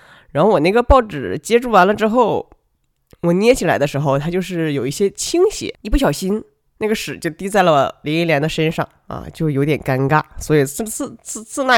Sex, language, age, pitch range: female, Chinese, 20-39, 140-185 Hz